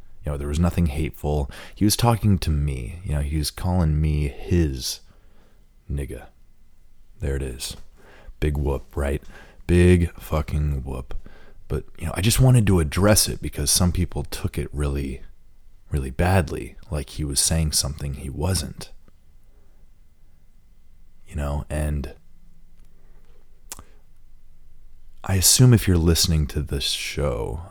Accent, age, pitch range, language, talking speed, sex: American, 30-49, 70-90 Hz, English, 135 wpm, male